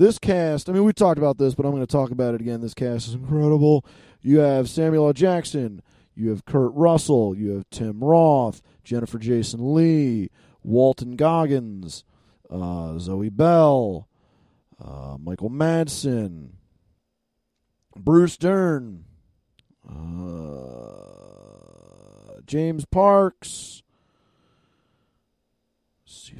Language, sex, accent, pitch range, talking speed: English, male, American, 115-165 Hz, 115 wpm